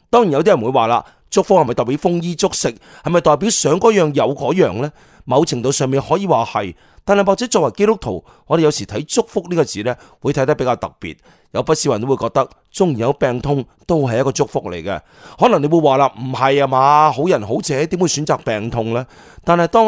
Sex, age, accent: male, 30-49, native